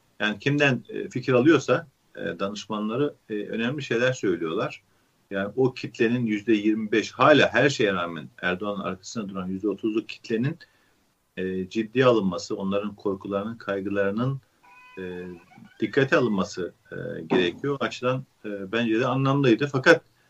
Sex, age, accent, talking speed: male, 40-59, native, 100 wpm